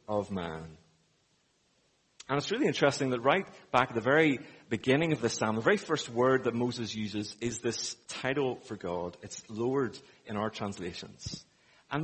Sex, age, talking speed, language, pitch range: male, 30-49, 170 wpm, English, 110-140 Hz